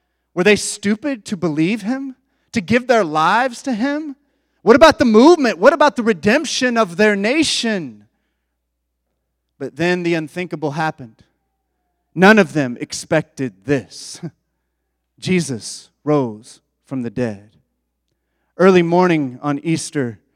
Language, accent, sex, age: English, American, male, 30-49